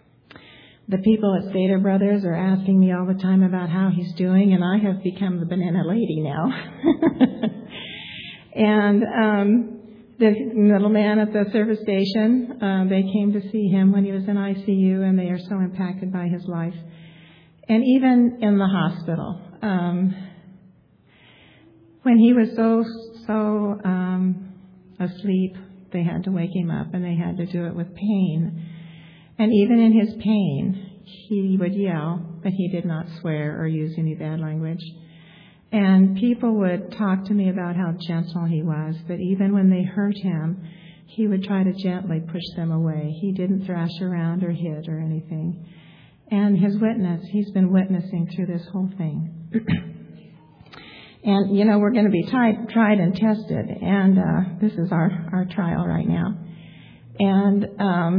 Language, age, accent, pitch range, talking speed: English, 50-69, American, 175-205 Hz, 165 wpm